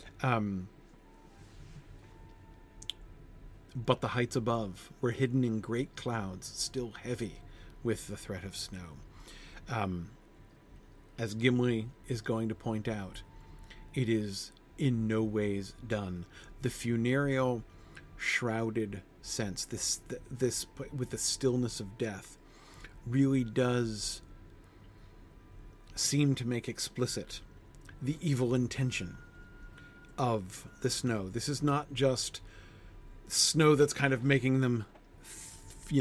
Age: 40-59